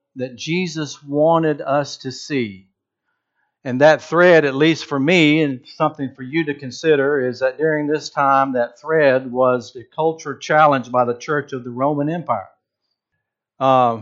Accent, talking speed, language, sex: American, 165 wpm, English, male